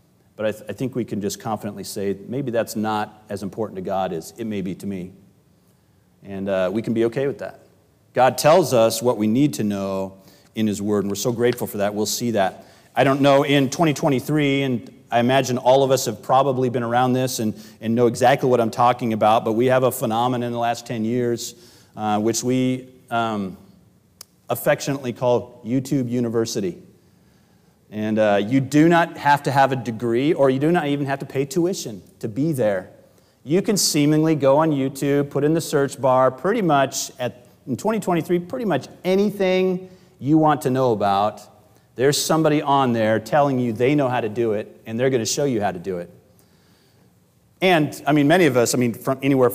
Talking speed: 205 wpm